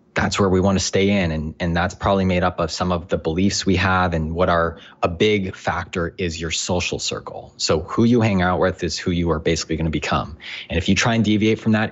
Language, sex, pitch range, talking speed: English, male, 85-105 Hz, 260 wpm